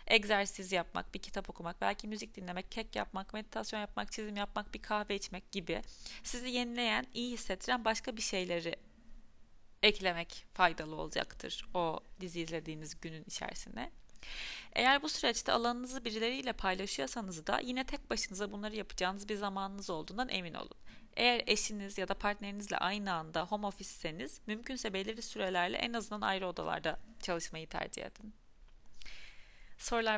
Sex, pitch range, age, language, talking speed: female, 185-225 Hz, 30-49, Turkish, 140 wpm